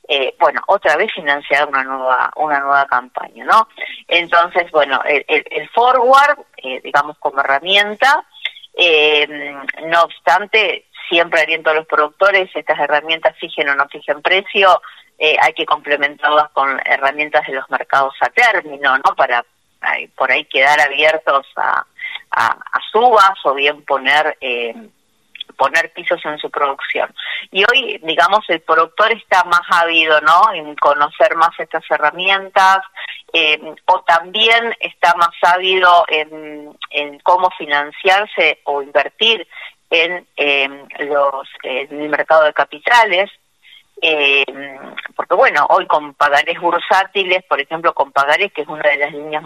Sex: female